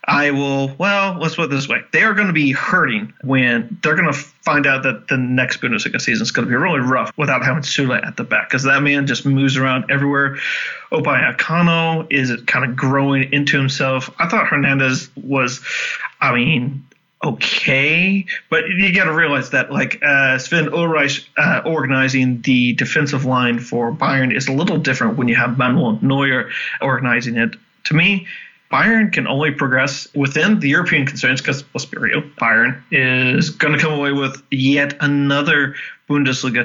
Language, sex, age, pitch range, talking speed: English, male, 30-49, 130-155 Hz, 175 wpm